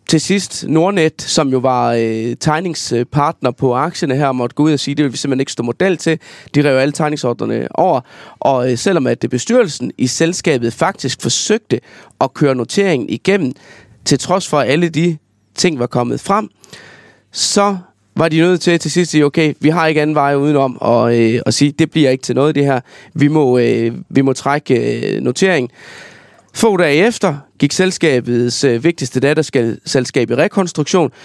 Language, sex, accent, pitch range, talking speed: Danish, male, native, 130-165 Hz, 195 wpm